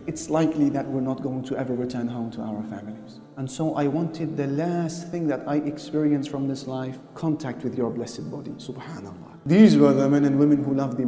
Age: 30-49